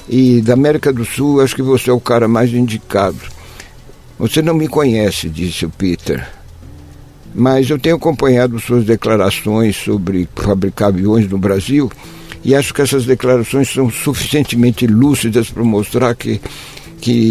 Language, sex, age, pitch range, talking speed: Portuguese, male, 60-79, 105-125 Hz, 150 wpm